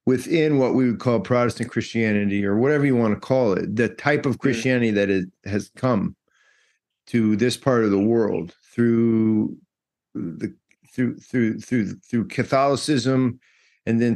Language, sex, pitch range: English, male, 115-140 Hz